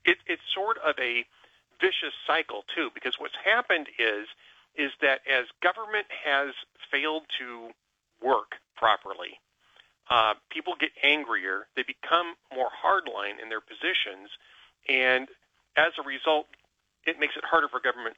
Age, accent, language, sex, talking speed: 40-59, American, English, male, 140 wpm